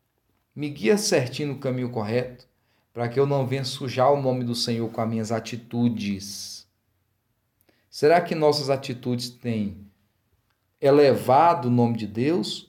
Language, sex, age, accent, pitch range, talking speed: Portuguese, male, 40-59, Brazilian, 110-145 Hz, 140 wpm